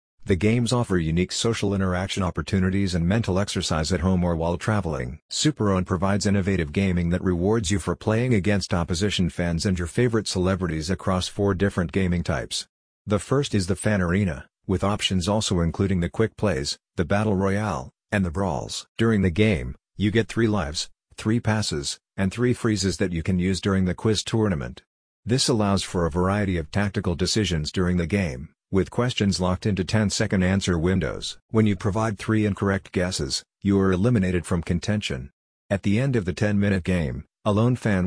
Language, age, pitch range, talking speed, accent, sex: English, 50-69, 90-105 Hz, 180 wpm, American, male